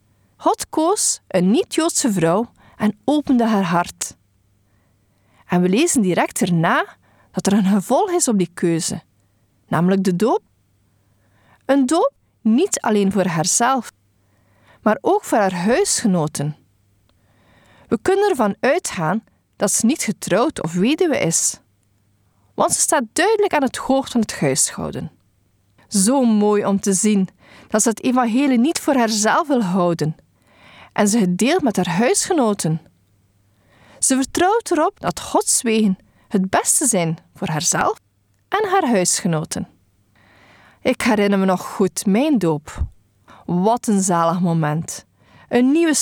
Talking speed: 135 wpm